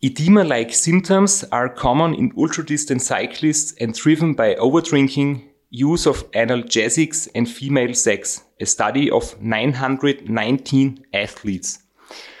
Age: 30-49